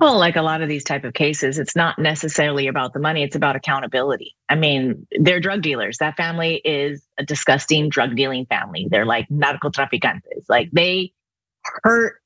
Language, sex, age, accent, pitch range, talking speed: English, female, 30-49, American, 155-225 Hz, 185 wpm